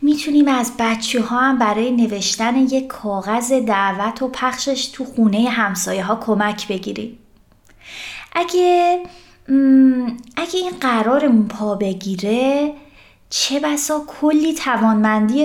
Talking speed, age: 110 wpm, 20-39